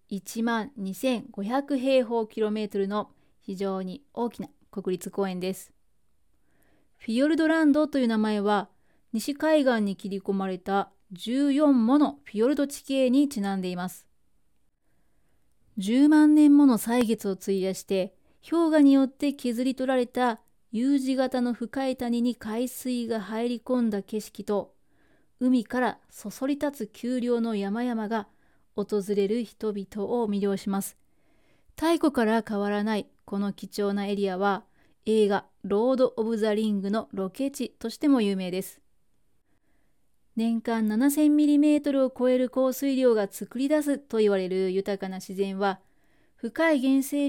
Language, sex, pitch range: Japanese, female, 200-260 Hz